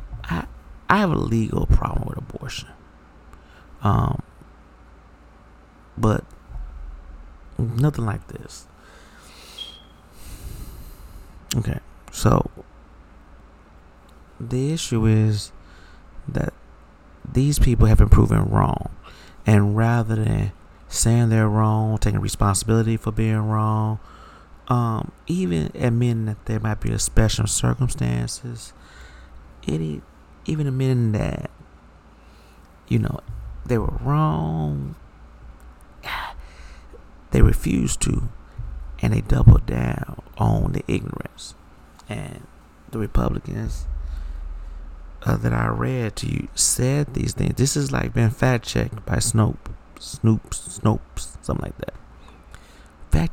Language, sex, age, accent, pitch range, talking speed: English, male, 30-49, American, 75-110 Hz, 100 wpm